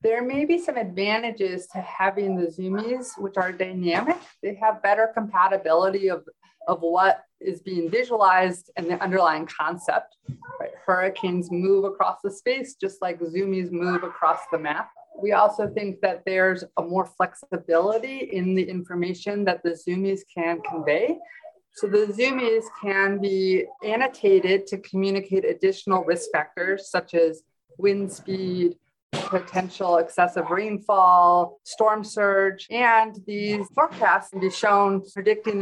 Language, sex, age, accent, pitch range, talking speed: English, female, 30-49, American, 180-210 Hz, 135 wpm